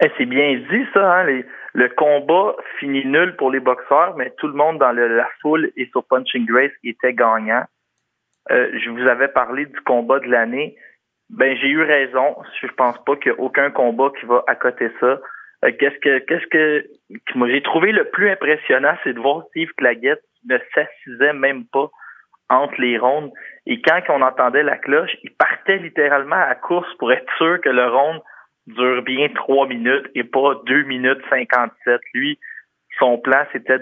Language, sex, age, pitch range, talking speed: French, male, 30-49, 125-170 Hz, 190 wpm